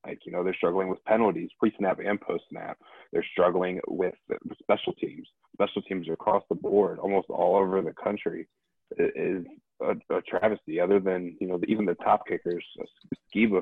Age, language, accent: 20-39, English, American